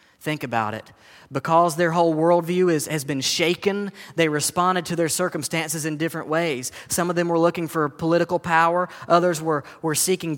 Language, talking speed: English, 180 wpm